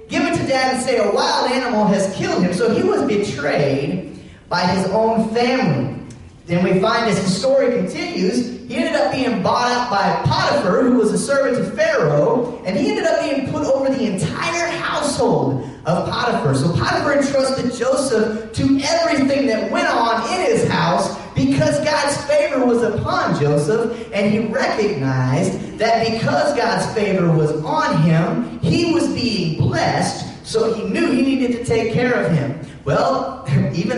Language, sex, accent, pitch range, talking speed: English, male, American, 150-250 Hz, 170 wpm